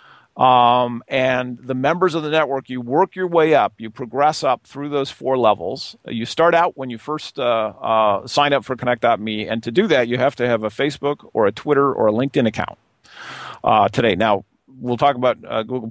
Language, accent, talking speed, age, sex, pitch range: English, American, 210 wpm, 40-59, male, 115-145 Hz